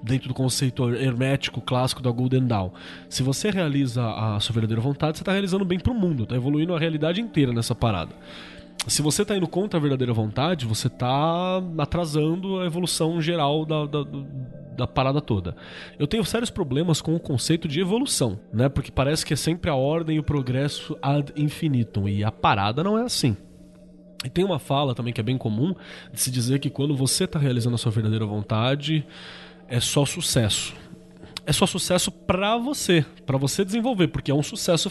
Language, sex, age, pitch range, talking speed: Portuguese, male, 20-39, 120-170 Hz, 195 wpm